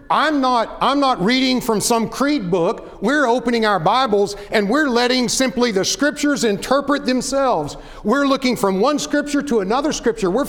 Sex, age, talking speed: male, 50-69, 170 wpm